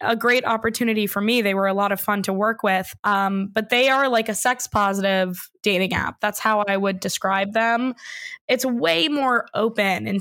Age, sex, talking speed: 10-29, female, 205 wpm